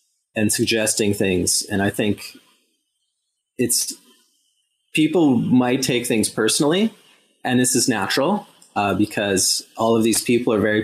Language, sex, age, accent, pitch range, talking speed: English, male, 30-49, American, 110-135 Hz, 135 wpm